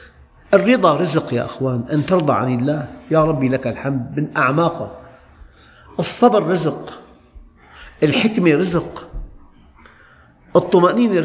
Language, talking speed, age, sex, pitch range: Arabic, 100 wpm, 50-69, male, 100-150 Hz